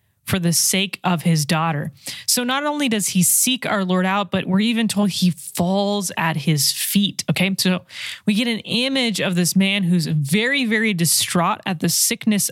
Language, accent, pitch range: English, American, 165-210 Hz